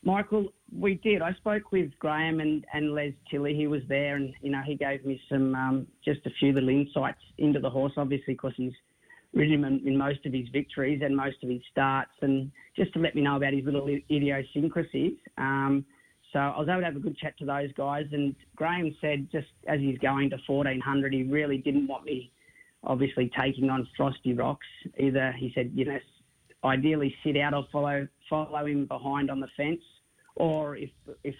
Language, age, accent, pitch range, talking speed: English, 30-49, Australian, 135-150 Hz, 205 wpm